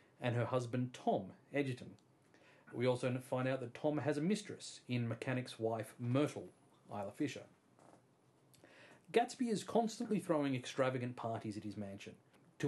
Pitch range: 115-140 Hz